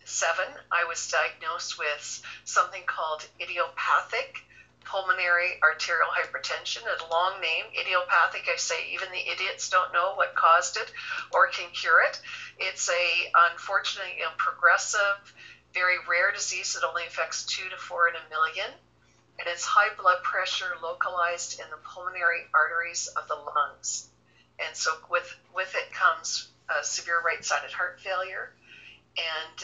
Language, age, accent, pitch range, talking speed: English, 50-69, American, 150-185 Hz, 140 wpm